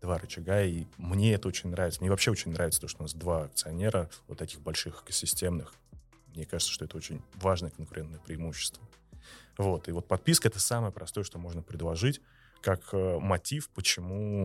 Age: 30-49